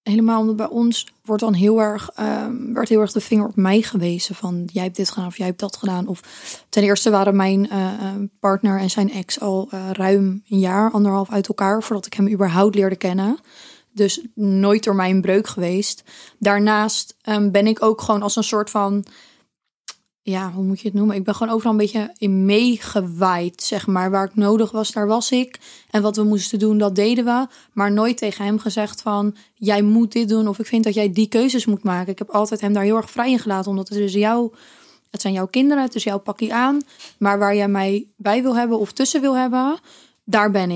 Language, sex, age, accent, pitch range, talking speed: Dutch, female, 20-39, Dutch, 200-225 Hz, 225 wpm